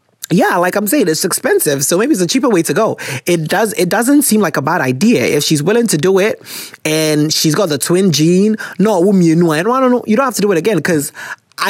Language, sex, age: English, male, 20-39